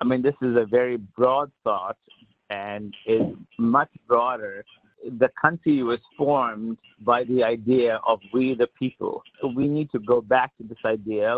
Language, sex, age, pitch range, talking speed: English, male, 50-69, 115-130 Hz, 170 wpm